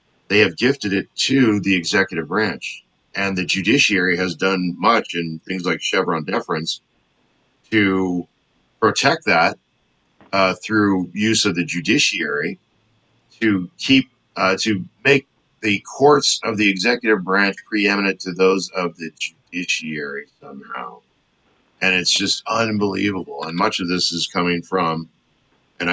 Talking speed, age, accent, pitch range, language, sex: 130 wpm, 50-69, American, 85-110 Hz, English, male